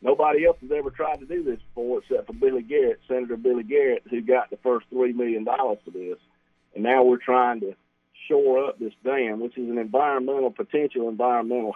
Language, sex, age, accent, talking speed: English, male, 50-69, American, 205 wpm